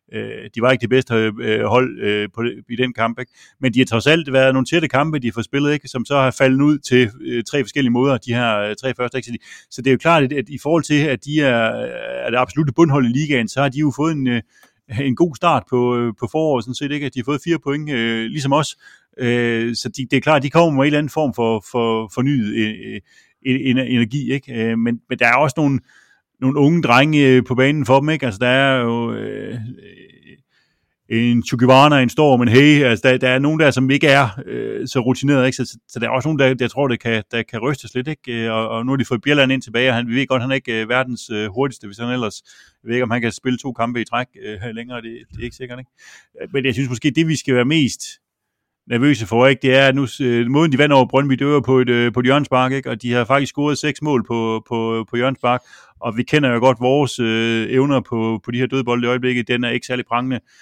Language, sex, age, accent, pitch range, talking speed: Danish, male, 30-49, native, 120-140 Hz, 255 wpm